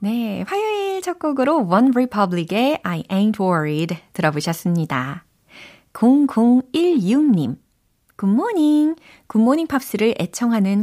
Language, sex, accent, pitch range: Korean, female, native, 160-245 Hz